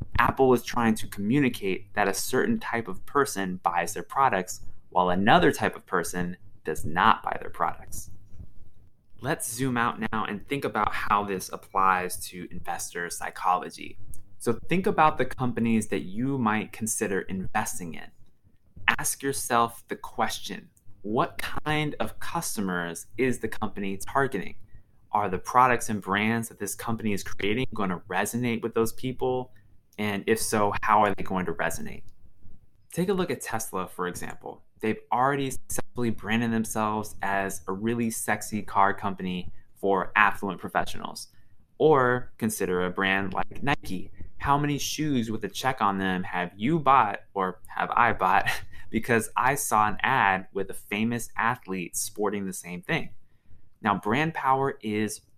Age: 20-39